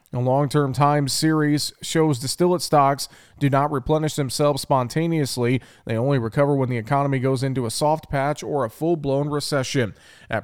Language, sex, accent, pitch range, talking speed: English, male, American, 125-150 Hz, 160 wpm